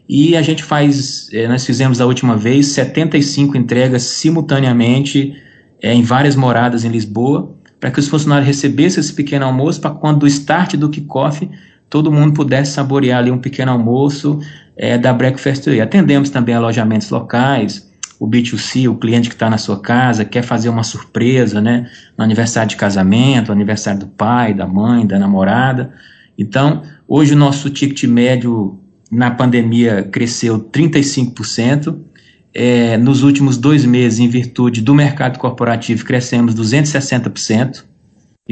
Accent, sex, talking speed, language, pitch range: Brazilian, male, 150 wpm, Portuguese, 115-140 Hz